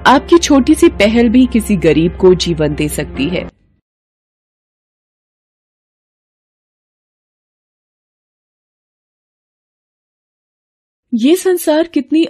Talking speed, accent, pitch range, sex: 75 wpm, native, 175-245 Hz, female